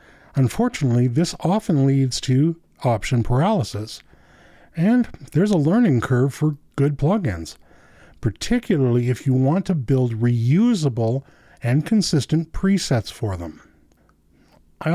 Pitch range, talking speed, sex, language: 115-160 Hz, 110 wpm, male, English